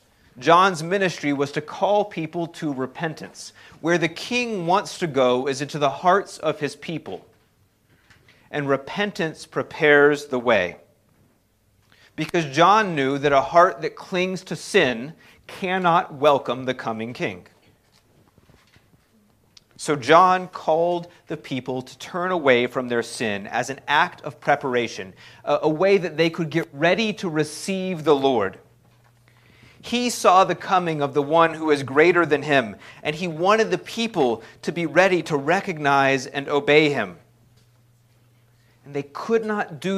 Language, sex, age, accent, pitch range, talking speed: English, male, 40-59, American, 130-180 Hz, 145 wpm